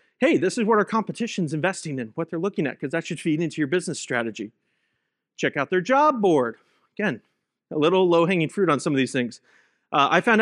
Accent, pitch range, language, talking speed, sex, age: American, 150-210 Hz, English, 220 wpm, male, 30-49